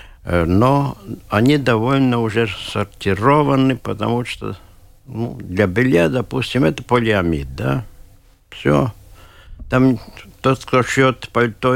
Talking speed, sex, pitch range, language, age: 100 wpm, male, 90-125 Hz, Russian, 60-79